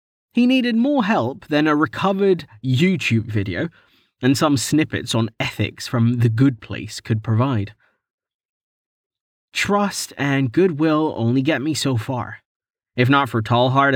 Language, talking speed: English, 140 wpm